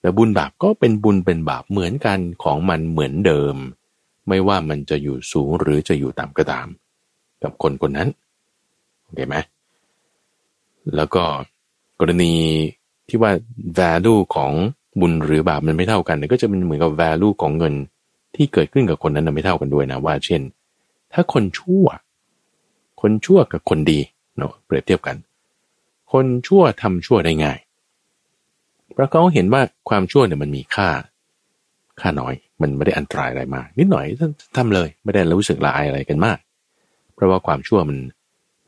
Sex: male